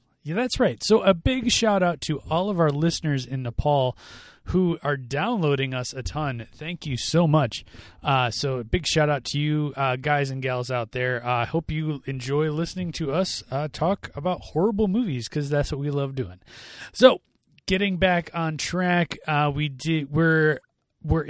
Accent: American